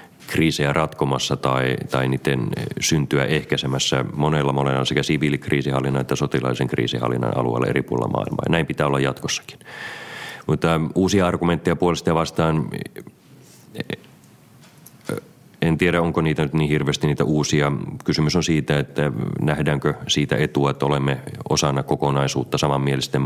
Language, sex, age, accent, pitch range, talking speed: Finnish, male, 30-49, native, 65-75 Hz, 125 wpm